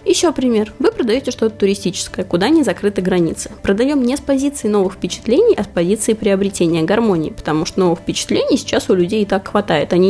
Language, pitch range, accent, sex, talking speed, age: Russian, 185-255 Hz, native, female, 190 wpm, 20-39